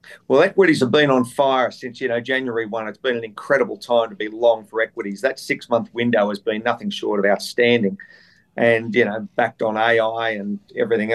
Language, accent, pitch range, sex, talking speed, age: English, Australian, 120-135 Hz, male, 210 wpm, 50-69